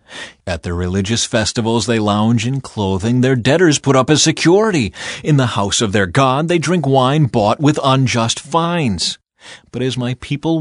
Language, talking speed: English, 175 wpm